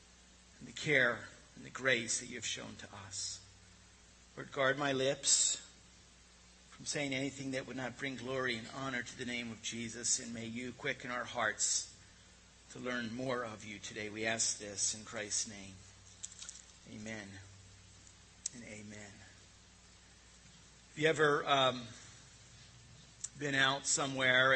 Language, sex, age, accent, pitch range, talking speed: English, male, 50-69, American, 105-145 Hz, 145 wpm